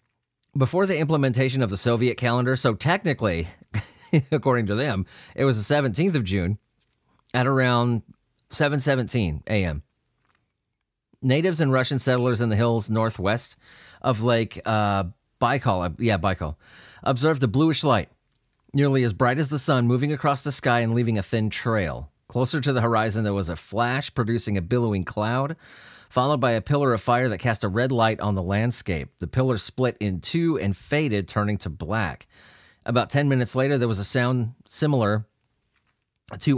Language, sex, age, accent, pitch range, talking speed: English, male, 30-49, American, 105-135 Hz, 165 wpm